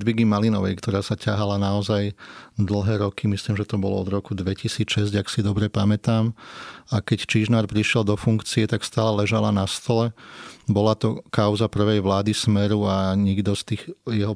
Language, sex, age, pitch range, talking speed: Slovak, male, 30-49, 100-110 Hz, 170 wpm